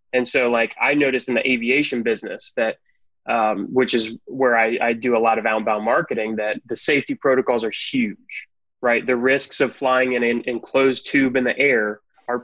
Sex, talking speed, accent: male, 200 wpm, American